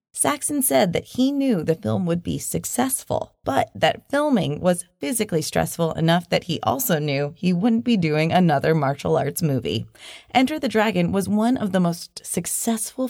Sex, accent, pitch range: female, American, 165-230 Hz